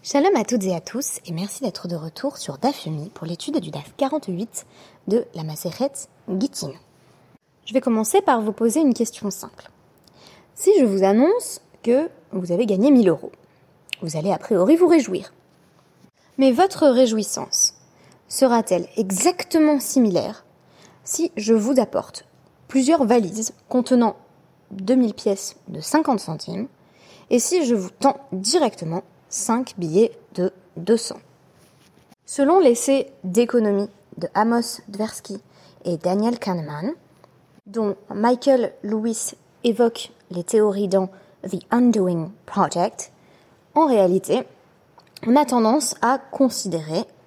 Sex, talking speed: female, 130 wpm